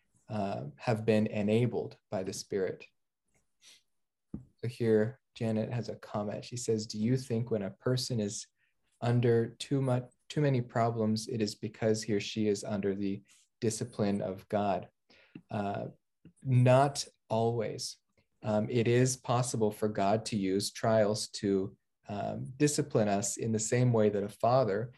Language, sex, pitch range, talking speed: English, male, 100-120 Hz, 150 wpm